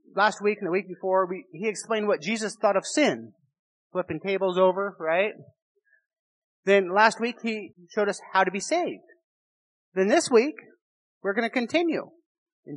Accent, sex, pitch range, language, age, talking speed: American, male, 180-240 Hz, English, 40-59, 165 wpm